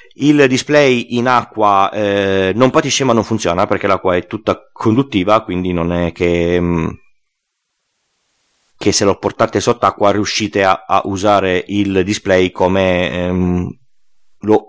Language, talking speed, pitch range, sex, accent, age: Italian, 140 wpm, 95-120 Hz, male, native, 30-49